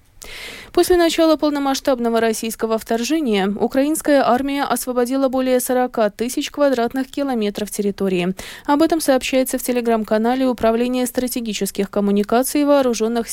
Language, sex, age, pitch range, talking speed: Russian, female, 20-39, 210-270 Hz, 105 wpm